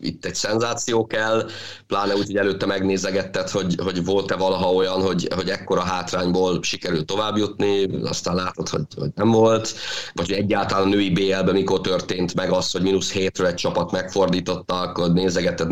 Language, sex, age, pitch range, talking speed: Hungarian, male, 30-49, 95-115 Hz, 170 wpm